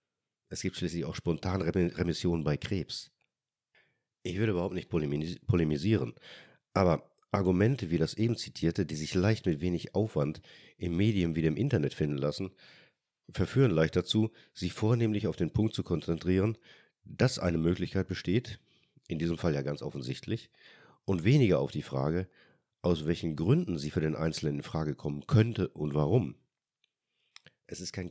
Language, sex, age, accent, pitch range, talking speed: German, male, 50-69, German, 80-105 Hz, 155 wpm